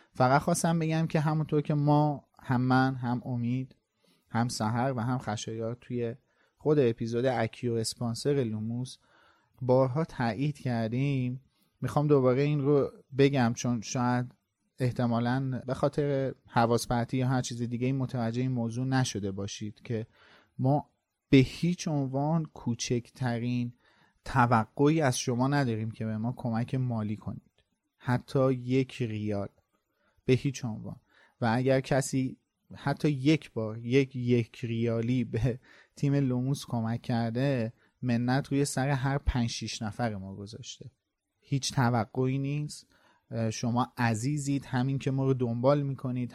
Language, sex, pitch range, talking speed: Persian, male, 115-135 Hz, 130 wpm